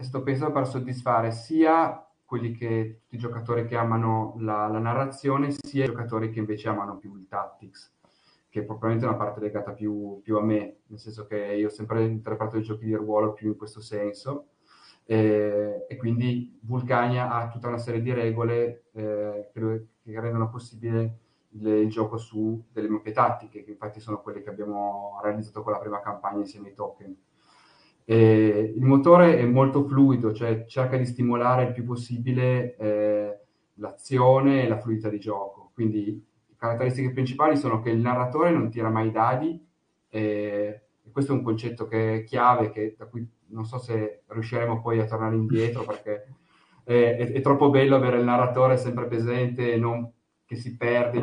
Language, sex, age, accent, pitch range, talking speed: Italian, male, 30-49, native, 110-125 Hz, 180 wpm